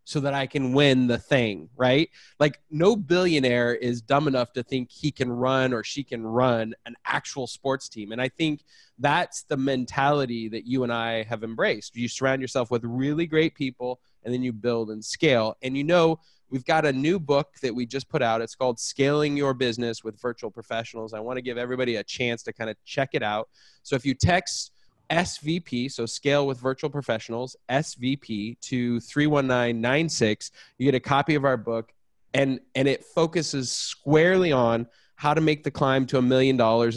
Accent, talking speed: American, 195 wpm